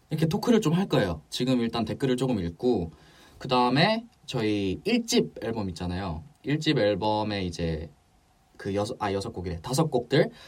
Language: English